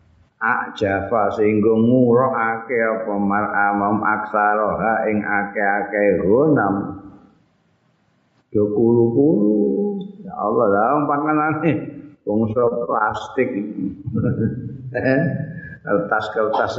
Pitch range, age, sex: 105-150 Hz, 50-69, male